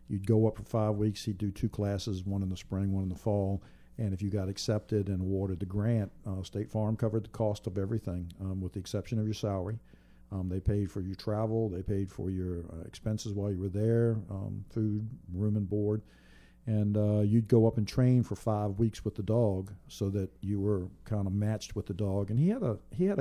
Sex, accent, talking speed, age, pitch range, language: male, American, 240 wpm, 50-69, 95-110 Hz, English